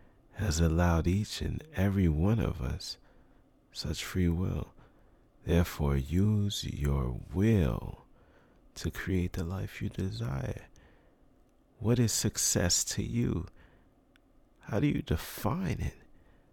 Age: 40-59